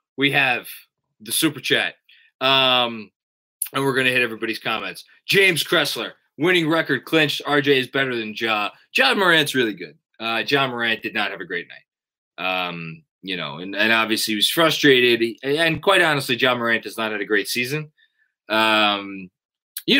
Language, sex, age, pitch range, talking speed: English, male, 20-39, 115-160 Hz, 170 wpm